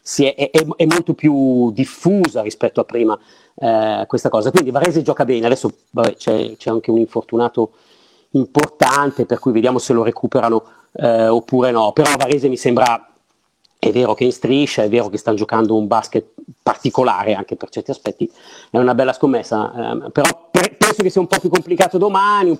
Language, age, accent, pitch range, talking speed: Italian, 40-59, native, 120-160 Hz, 190 wpm